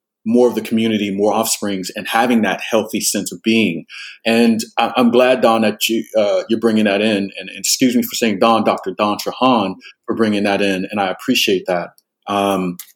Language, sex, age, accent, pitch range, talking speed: English, male, 30-49, American, 100-115 Hz, 195 wpm